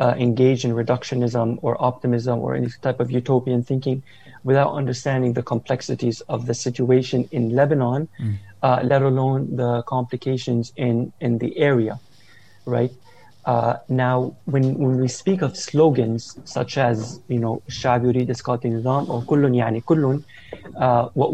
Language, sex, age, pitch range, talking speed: English, male, 30-49, 120-140 Hz, 135 wpm